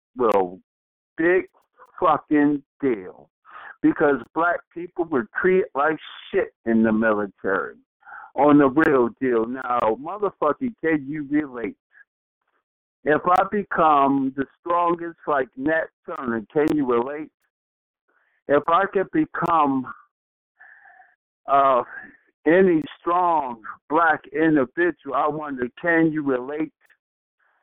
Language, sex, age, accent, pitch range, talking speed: English, male, 60-79, American, 145-200 Hz, 105 wpm